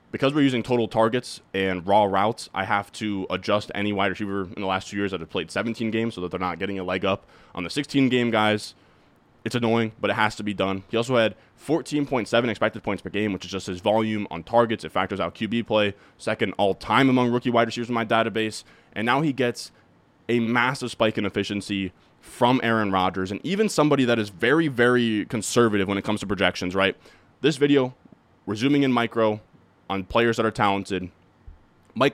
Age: 20-39